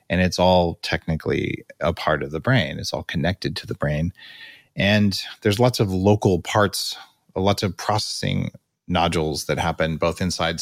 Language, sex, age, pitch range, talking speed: English, male, 30-49, 85-110 Hz, 165 wpm